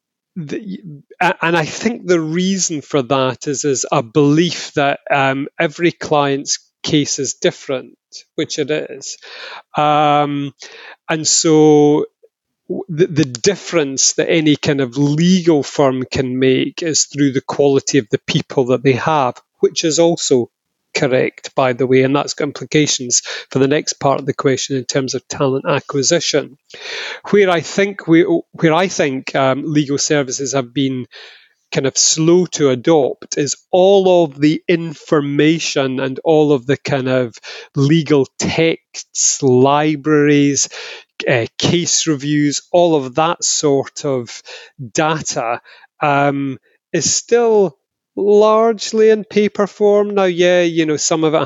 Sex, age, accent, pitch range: male, 30-49, British, 140-165 Hz